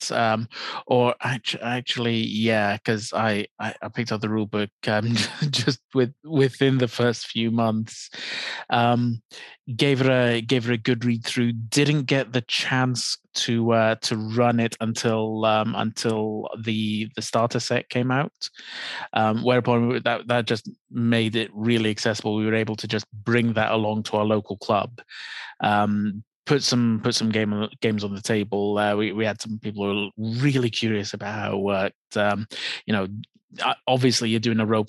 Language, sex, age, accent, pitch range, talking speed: English, male, 20-39, British, 110-120 Hz, 175 wpm